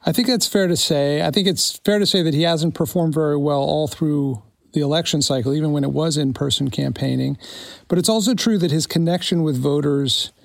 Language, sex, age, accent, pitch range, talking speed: English, male, 40-59, American, 145-170 Hz, 220 wpm